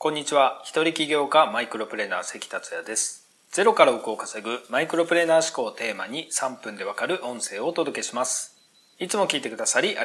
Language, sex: Japanese, male